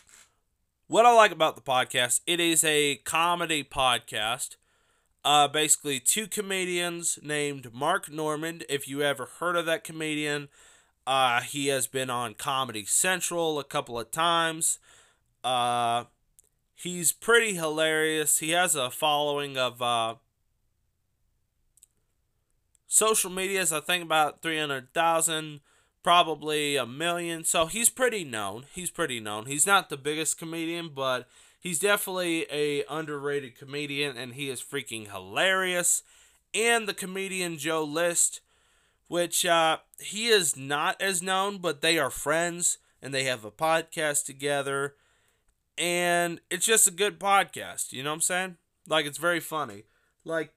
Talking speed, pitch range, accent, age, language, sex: 140 wpm, 140-175 Hz, American, 20-39, English, male